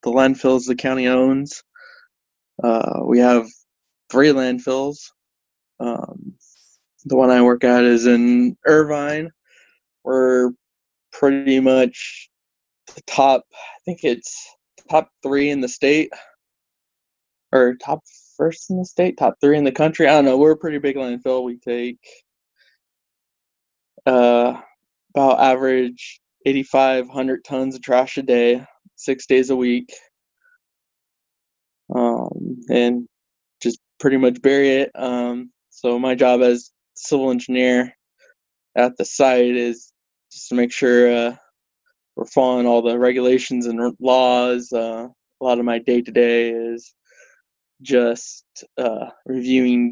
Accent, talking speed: American, 130 wpm